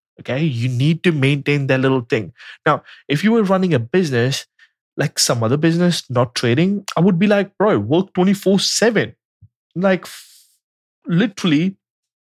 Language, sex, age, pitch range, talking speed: English, male, 20-39, 125-175 Hz, 150 wpm